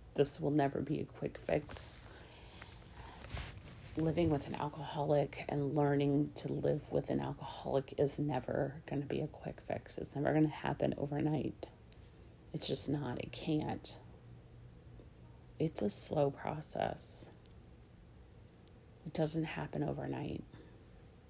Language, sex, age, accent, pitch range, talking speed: English, female, 30-49, American, 90-150 Hz, 125 wpm